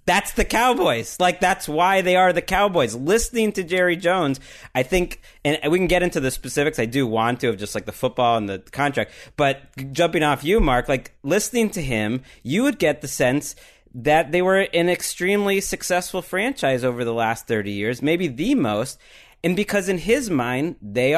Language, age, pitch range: English, 30-49, 125-180 Hz